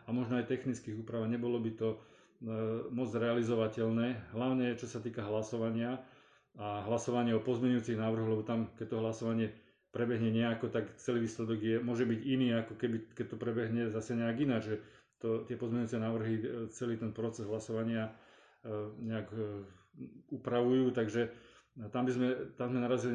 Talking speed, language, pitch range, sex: 160 wpm, Slovak, 115-130 Hz, male